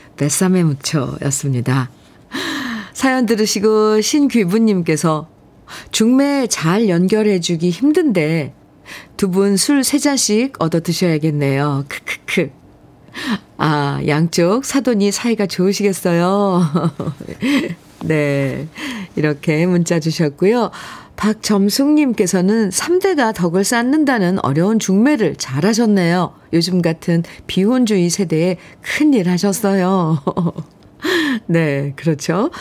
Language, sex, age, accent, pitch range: Korean, female, 40-59, native, 165-225 Hz